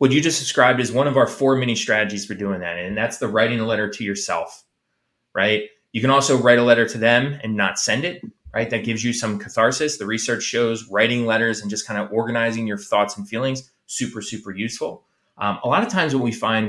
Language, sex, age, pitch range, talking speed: English, male, 20-39, 105-135 Hz, 235 wpm